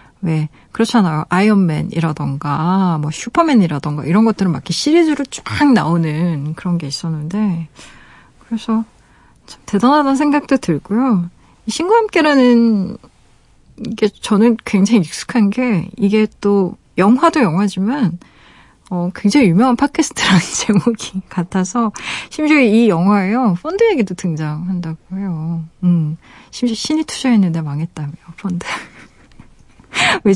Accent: native